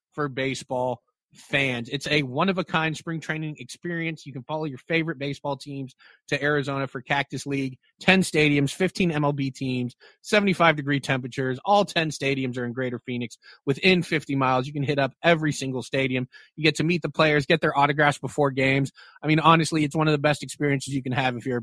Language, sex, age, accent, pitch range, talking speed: English, male, 30-49, American, 130-155 Hz, 200 wpm